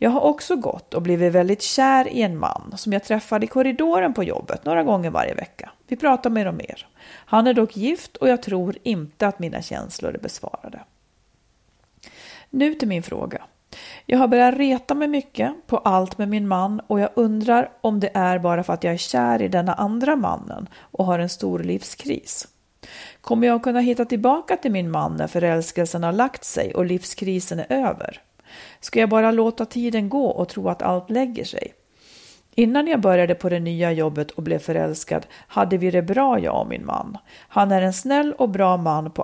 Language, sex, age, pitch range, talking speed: Swedish, female, 40-59, 175-240 Hz, 200 wpm